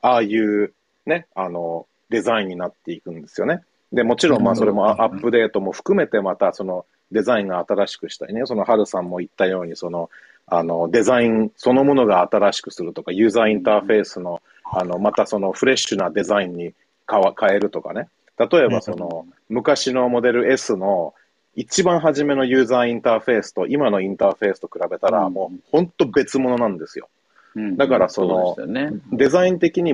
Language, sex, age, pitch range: Japanese, male, 40-59, 95-140 Hz